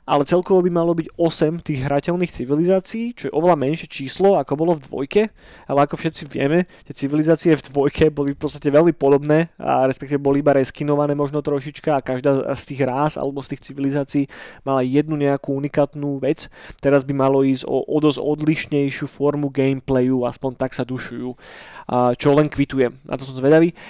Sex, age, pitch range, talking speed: male, 20-39, 135-155 Hz, 185 wpm